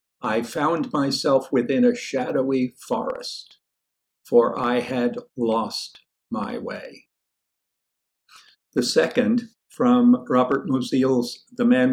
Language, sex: English, male